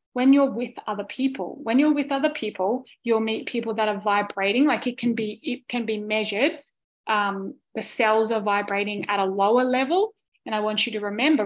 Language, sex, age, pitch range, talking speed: English, female, 20-39, 210-275 Hz, 205 wpm